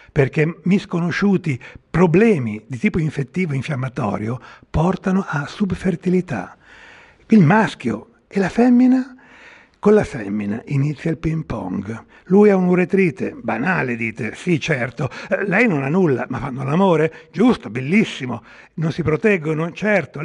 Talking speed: 120 wpm